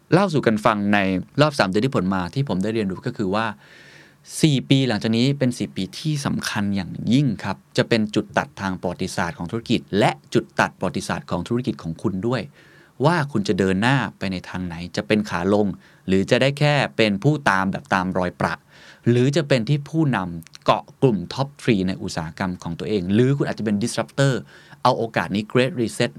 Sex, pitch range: male, 95-140 Hz